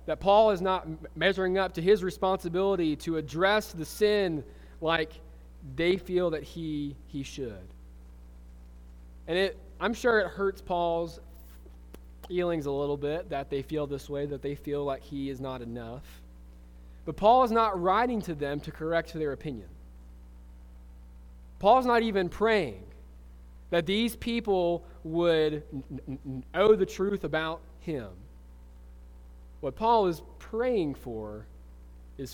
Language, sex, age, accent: English, male, 20-39, American